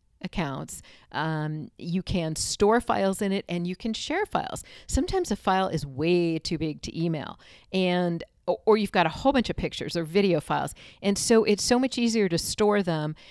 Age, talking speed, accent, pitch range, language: 40-59, 195 wpm, American, 155-195 Hz, English